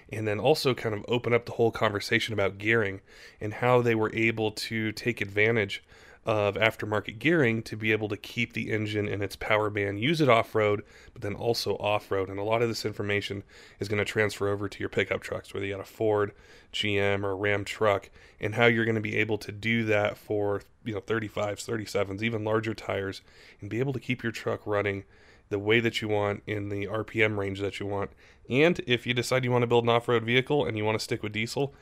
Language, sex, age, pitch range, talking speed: English, male, 30-49, 105-115 Hz, 230 wpm